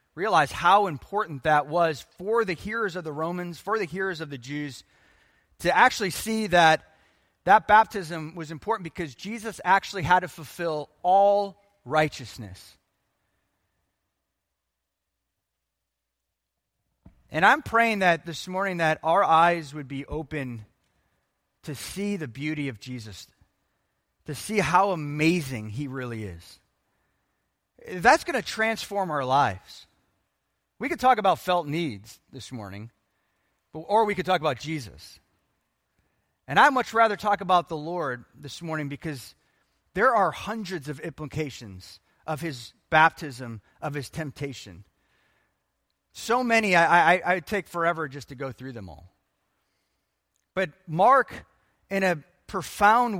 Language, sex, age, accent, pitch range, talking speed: English, male, 30-49, American, 125-190 Hz, 130 wpm